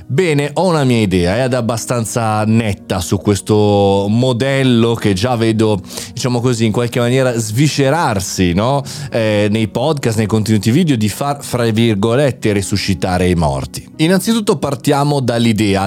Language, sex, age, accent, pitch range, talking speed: Italian, male, 30-49, native, 100-125 Hz, 135 wpm